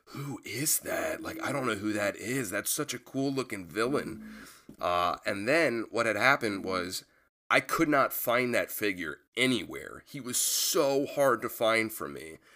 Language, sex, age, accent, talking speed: English, male, 30-49, American, 180 wpm